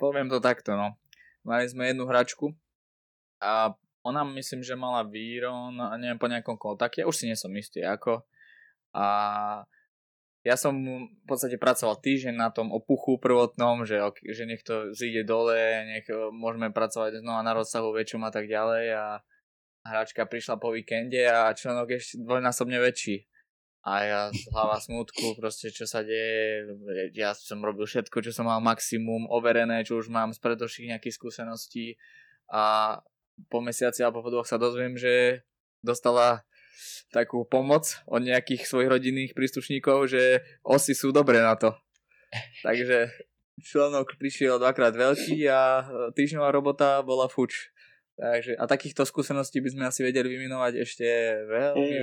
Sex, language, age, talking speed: male, Slovak, 20-39, 150 wpm